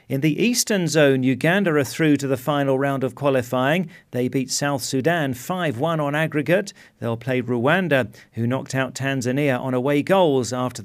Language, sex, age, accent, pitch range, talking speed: English, male, 40-59, British, 130-165 Hz, 170 wpm